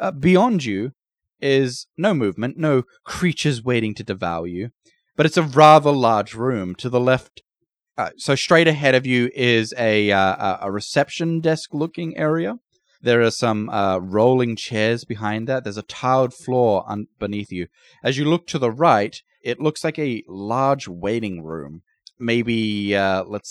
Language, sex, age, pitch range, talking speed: English, male, 30-49, 105-145 Hz, 165 wpm